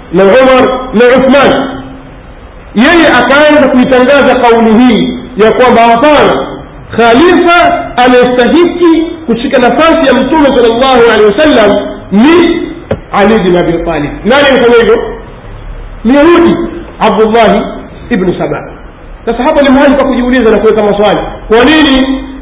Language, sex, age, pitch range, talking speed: Swahili, male, 50-69, 210-270 Hz, 120 wpm